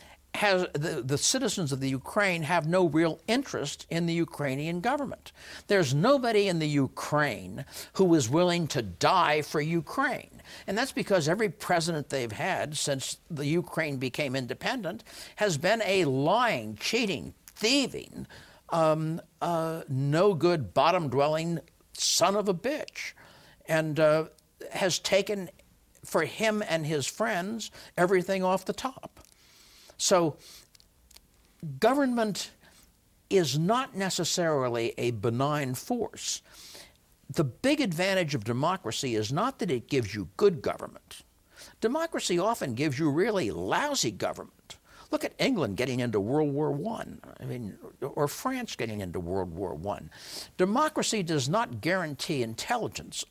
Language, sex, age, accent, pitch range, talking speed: English, male, 60-79, American, 135-195 Hz, 130 wpm